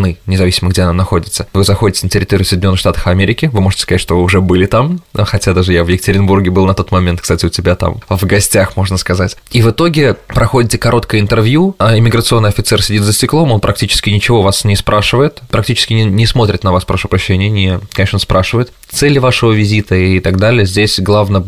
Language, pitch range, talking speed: Russian, 95-110 Hz, 205 wpm